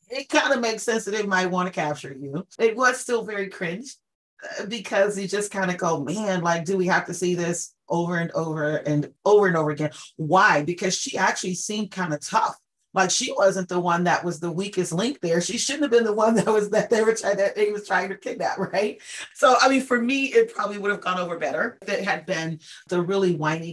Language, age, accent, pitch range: English, 40-59, American, 165-210 Hz